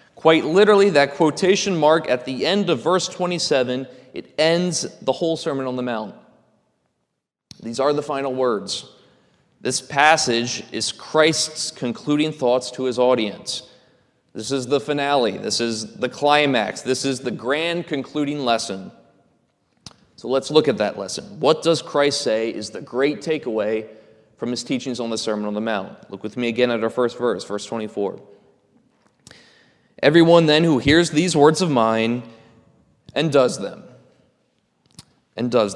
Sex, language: male, English